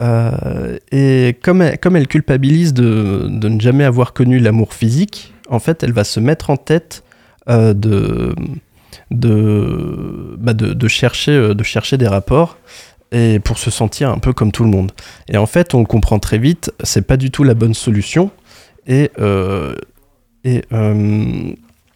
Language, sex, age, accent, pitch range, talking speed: French, male, 20-39, French, 110-135 Hz, 170 wpm